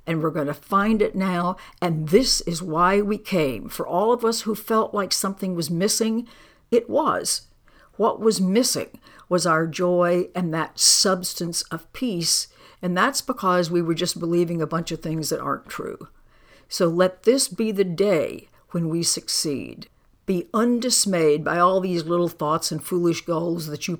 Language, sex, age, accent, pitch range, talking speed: English, female, 60-79, American, 165-210 Hz, 180 wpm